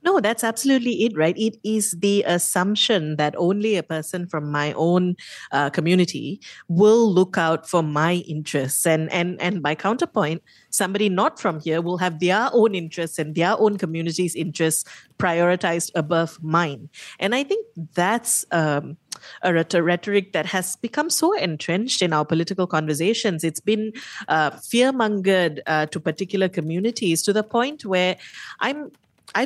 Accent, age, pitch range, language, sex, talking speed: Indian, 30-49, 160-210 Hz, English, female, 155 wpm